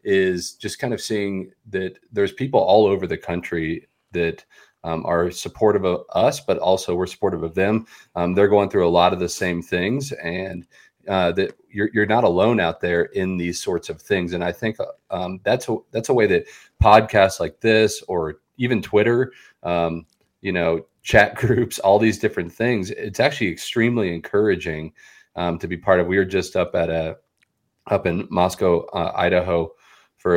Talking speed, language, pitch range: 185 wpm, English, 85-105 Hz